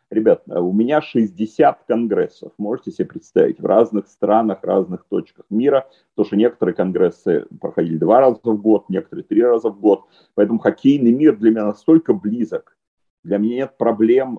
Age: 40-59